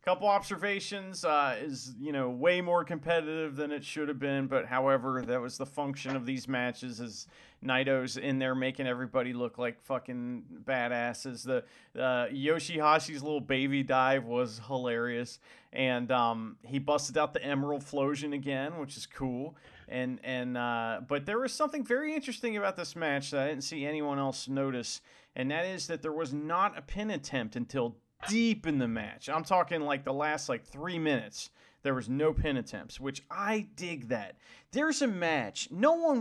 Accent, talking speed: American, 180 wpm